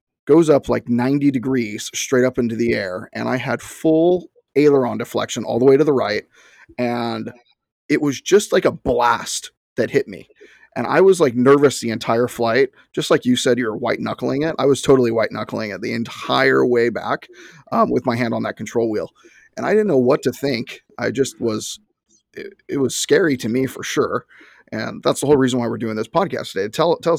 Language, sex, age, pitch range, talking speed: English, male, 30-49, 120-165 Hz, 215 wpm